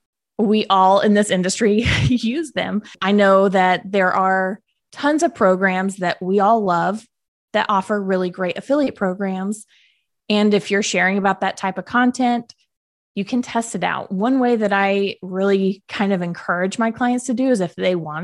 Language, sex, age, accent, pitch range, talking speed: English, female, 20-39, American, 185-235 Hz, 180 wpm